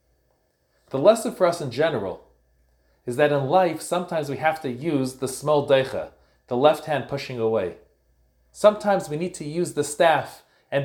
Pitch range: 120-175 Hz